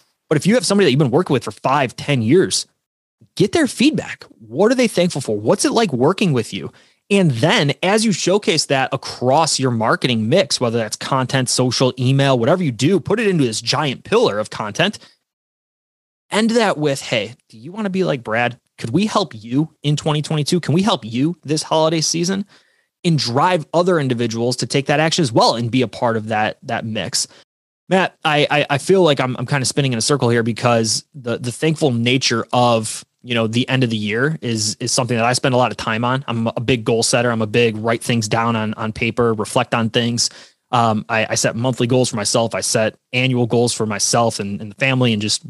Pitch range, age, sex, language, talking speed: 115-155 Hz, 20-39, male, English, 225 wpm